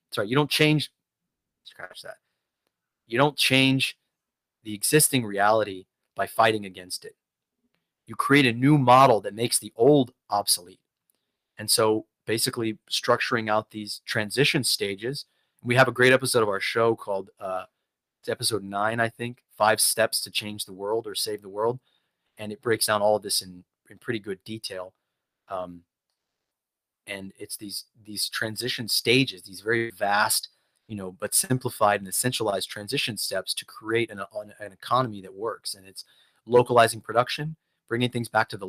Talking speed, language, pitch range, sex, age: 160 wpm, English, 105-135 Hz, male, 30-49